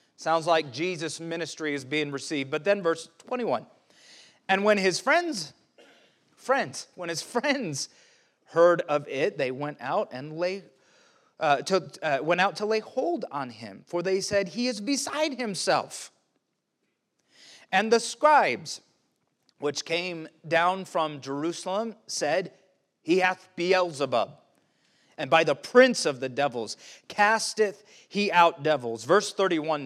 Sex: male